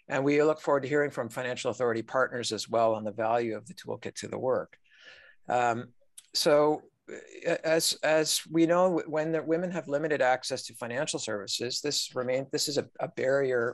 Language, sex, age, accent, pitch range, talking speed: English, male, 50-69, American, 115-150 Hz, 190 wpm